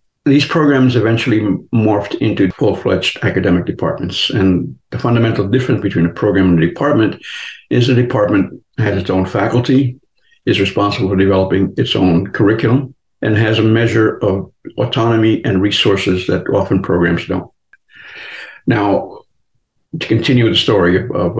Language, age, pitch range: English, 60-79, 100-130 Hz